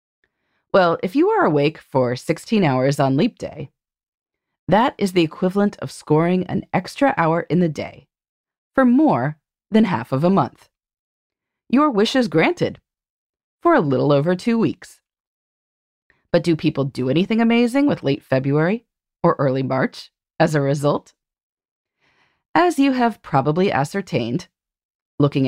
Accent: American